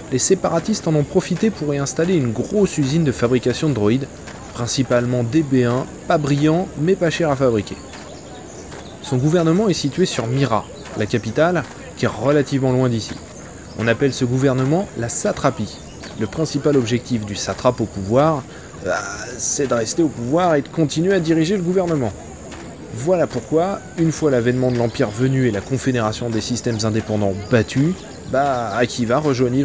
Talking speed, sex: 165 wpm, male